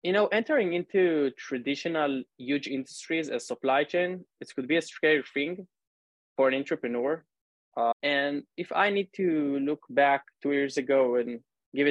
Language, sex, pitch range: English, male, 130-165 Hz